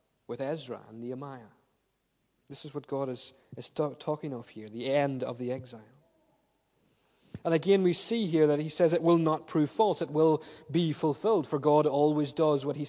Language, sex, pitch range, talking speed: English, male, 135-170 Hz, 190 wpm